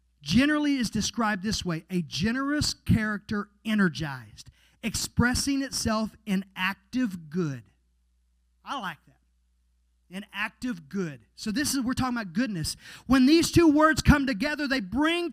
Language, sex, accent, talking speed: English, male, American, 135 wpm